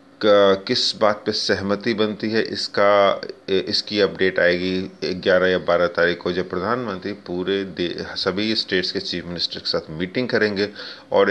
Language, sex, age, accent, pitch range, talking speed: Hindi, male, 30-49, native, 95-110 Hz, 150 wpm